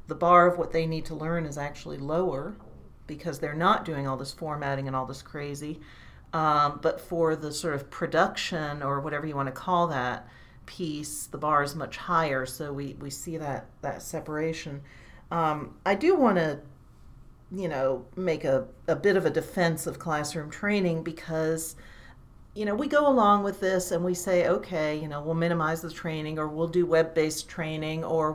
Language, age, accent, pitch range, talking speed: English, 40-59, American, 140-170 Hz, 190 wpm